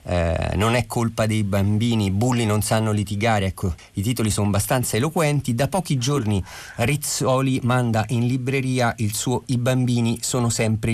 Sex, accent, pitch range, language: male, native, 95-120 Hz, Italian